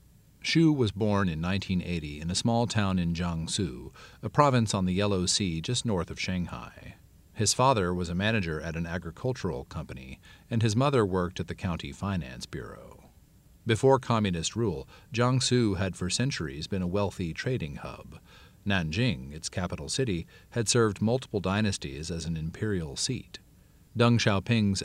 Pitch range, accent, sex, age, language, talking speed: 85-110 Hz, American, male, 40-59, English, 155 wpm